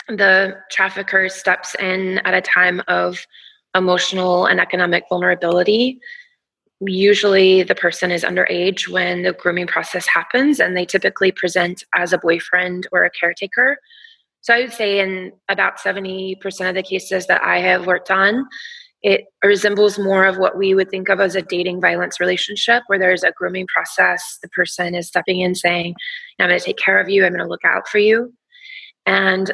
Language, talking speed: English, 175 wpm